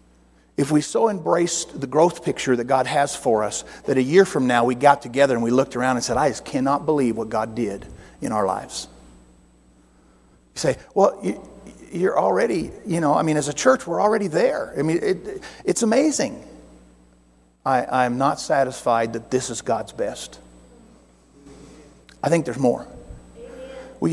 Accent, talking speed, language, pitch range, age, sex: American, 175 wpm, English, 120-165 Hz, 50-69, male